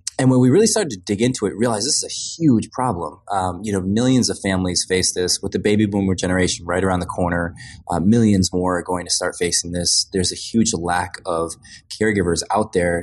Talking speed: 225 wpm